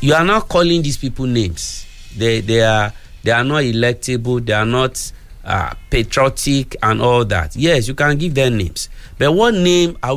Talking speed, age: 190 wpm, 50-69